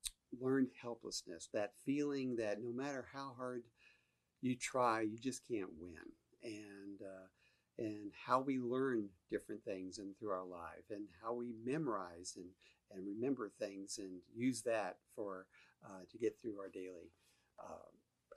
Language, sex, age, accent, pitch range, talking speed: English, male, 50-69, American, 105-130 Hz, 150 wpm